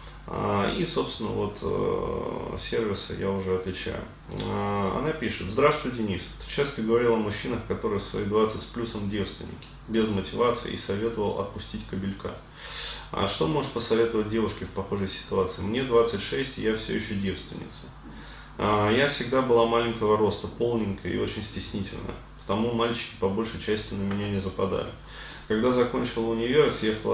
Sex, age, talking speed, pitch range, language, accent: male, 20-39, 140 wpm, 100-115 Hz, Russian, native